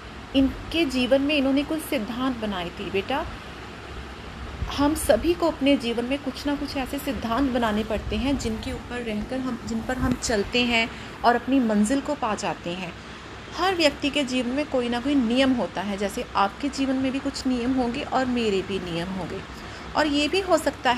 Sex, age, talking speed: female, 30-49, 195 wpm